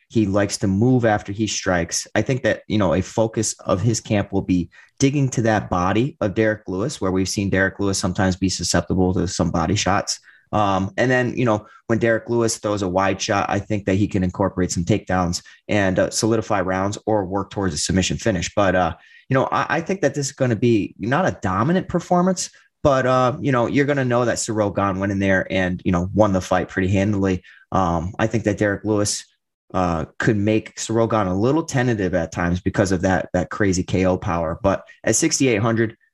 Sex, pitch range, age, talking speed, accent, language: male, 95-115 Hz, 30-49, 220 wpm, American, English